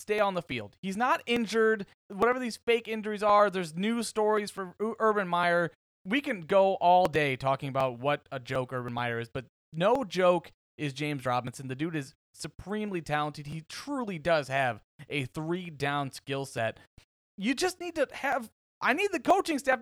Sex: male